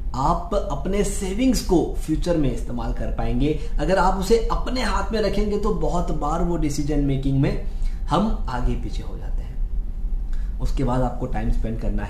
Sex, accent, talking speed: male, native, 175 wpm